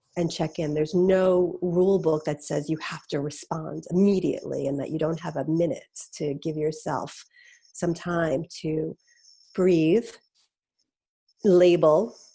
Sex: female